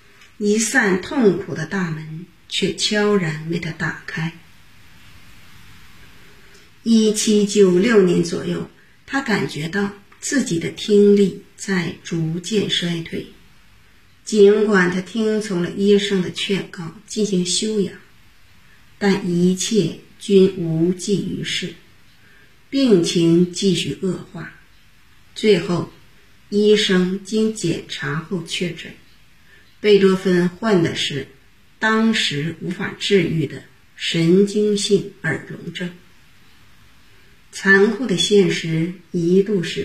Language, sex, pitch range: Chinese, female, 165-200 Hz